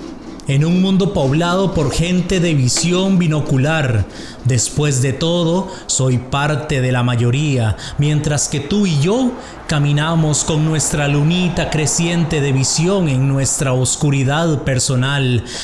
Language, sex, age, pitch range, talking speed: English, male, 30-49, 125-160 Hz, 125 wpm